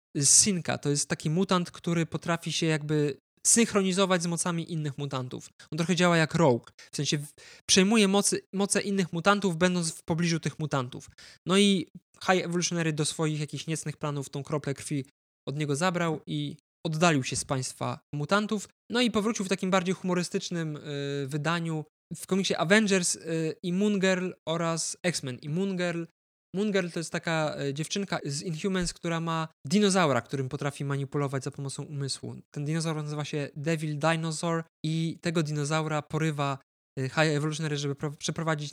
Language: Polish